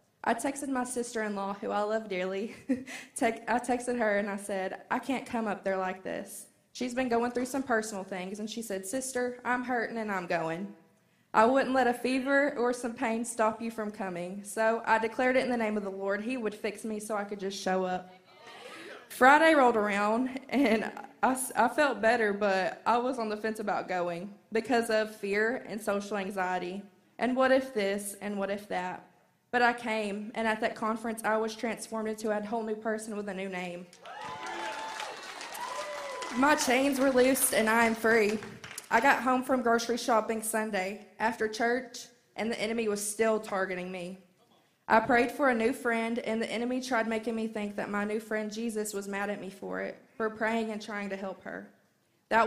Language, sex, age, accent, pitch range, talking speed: English, female, 20-39, American, 200-240 Hz, 200 wpm